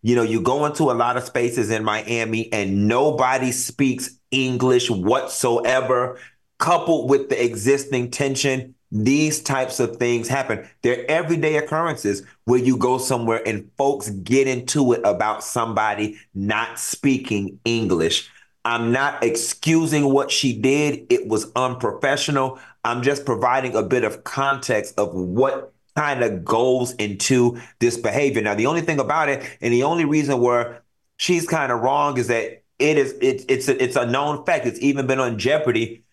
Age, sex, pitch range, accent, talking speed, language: 30-49, male, 120-150 Hz, American, 160 wpm, English